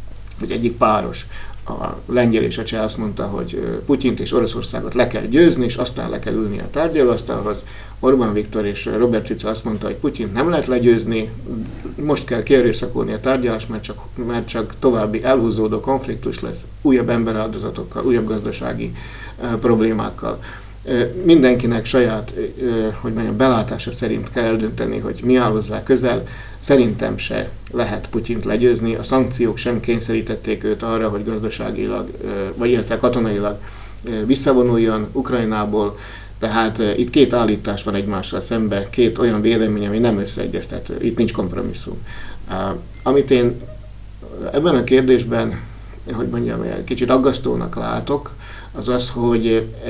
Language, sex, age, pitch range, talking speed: Hungarian, male, 60-79, 105-120 Hz, 140 wpm